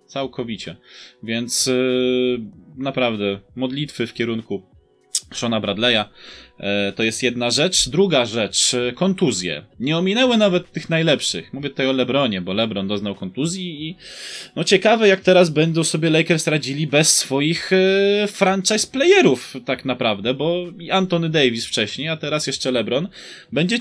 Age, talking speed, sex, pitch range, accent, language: 20-39, 145 wpm, male, 115-165 Hz, native, Polish